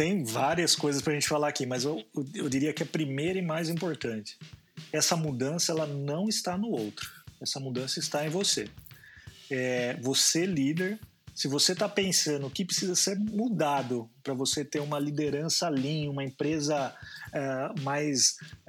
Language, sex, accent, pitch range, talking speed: Portuguese, male, Brazilian, 135-165 Hz, 165 wpm